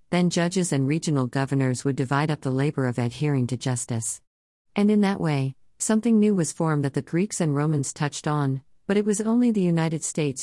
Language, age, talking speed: English, 50-69, 205 wpm